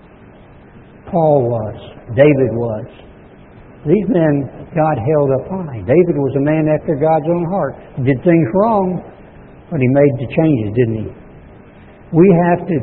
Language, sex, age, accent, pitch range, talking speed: English, male, 60-79, American, 130-190 Hz, 150 wpm